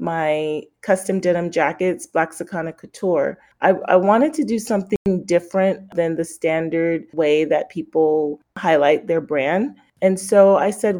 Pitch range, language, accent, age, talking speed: 165-200 Hz, English, American, 30-49, 145 wpm